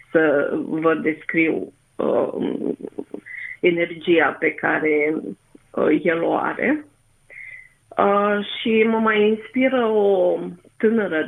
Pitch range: 170-215 Hz